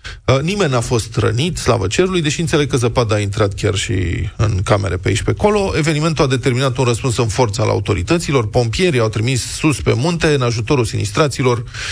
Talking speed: 195 wpm